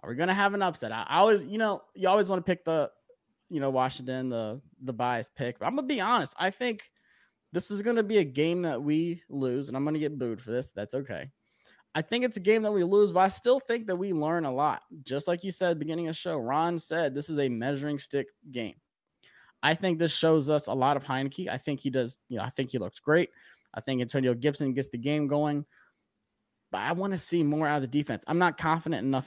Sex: male